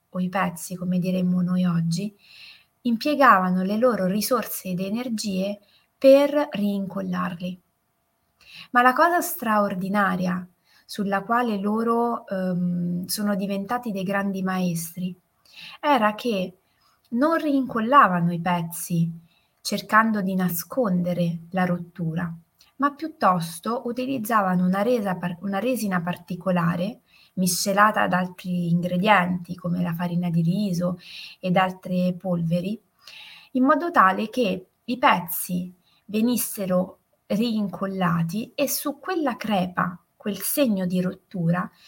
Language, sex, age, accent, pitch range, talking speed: Italian, female, 20-39, native, 180-225 Hz, 105 wpm